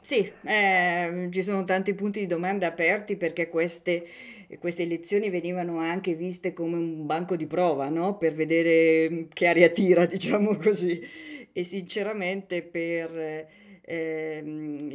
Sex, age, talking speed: female, 40-59, 130 wpm